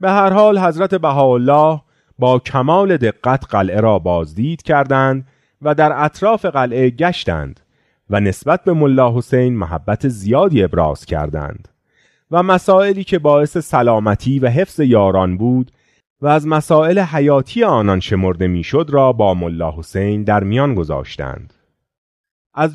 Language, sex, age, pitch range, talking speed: Persian, male, 30-49, 105-170 Hz, 130 wpm